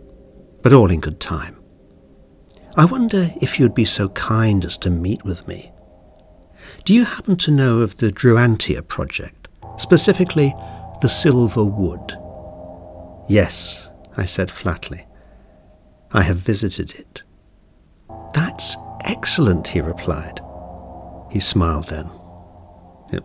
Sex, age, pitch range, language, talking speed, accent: male, 60-79, 90-120 Hz, English, 120 wpm, British